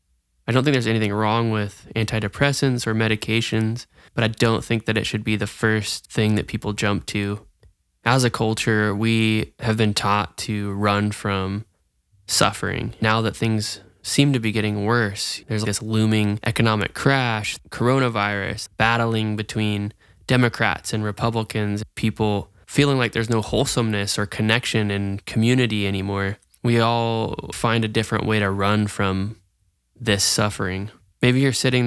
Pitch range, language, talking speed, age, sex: 100-115 Hz, English, 150 wpm, 10-29, male